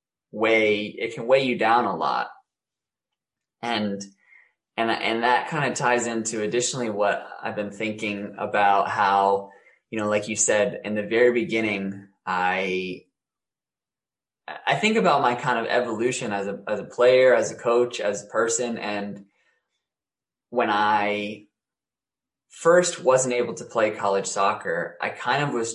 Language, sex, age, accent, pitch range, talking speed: English, male, 20-39, American, 100-125 Hz, 150 wpm